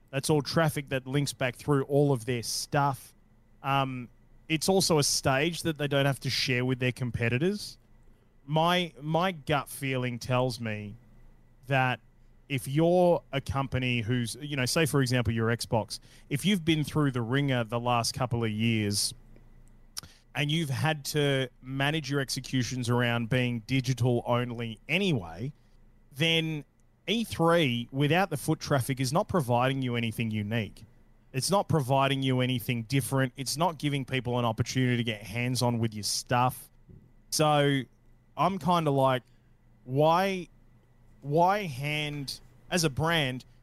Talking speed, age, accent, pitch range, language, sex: 150 wpm, 20-39, Australian, 120-145 Hz, English, male